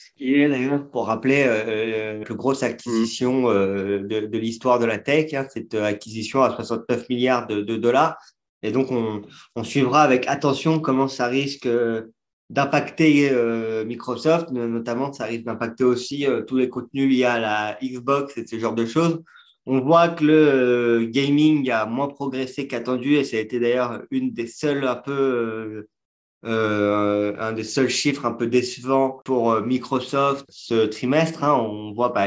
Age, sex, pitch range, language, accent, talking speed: 30-49, male, 115-135 Hz, French, French, 180 wpm